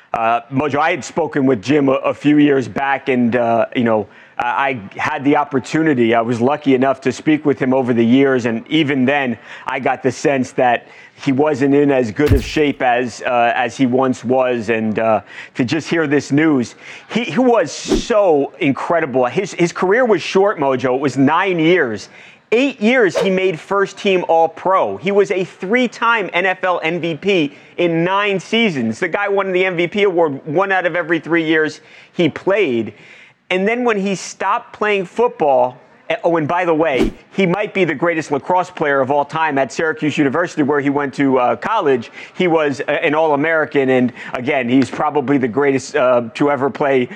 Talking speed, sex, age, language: 195 wpm, male, 30-49, English